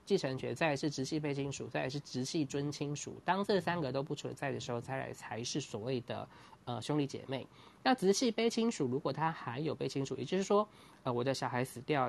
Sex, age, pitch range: male, 20-39, 125-170 Hz